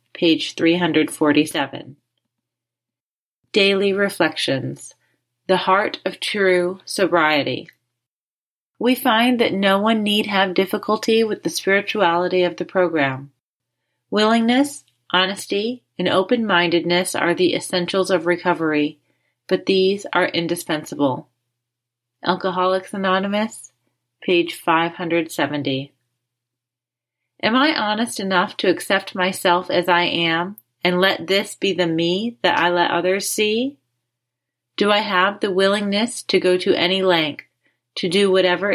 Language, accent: English, American